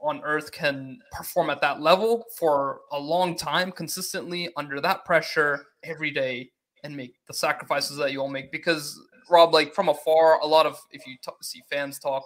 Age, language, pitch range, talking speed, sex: 20-39, English, 150-195 Hz, 190 wpm, male